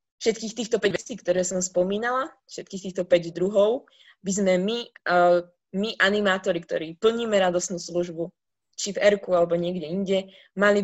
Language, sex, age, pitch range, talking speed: Slovak, female, 20-39, 175-205 Hz, 155 wpm